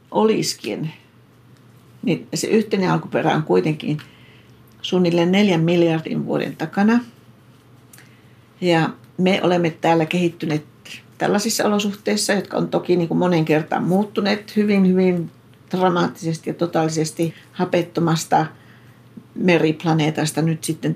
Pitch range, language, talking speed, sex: 130-180 Hz, Finnish, 100 wpm, female